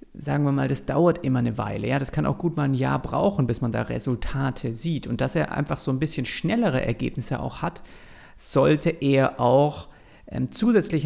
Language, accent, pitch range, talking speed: German, German, 125-160 Hz, 200 wpm